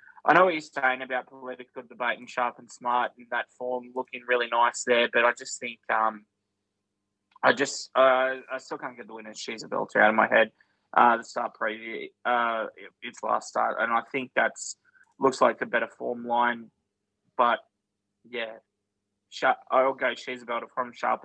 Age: 20-39